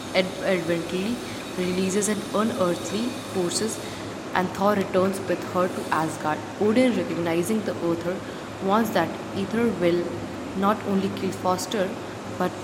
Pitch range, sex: 175-210 Hz, female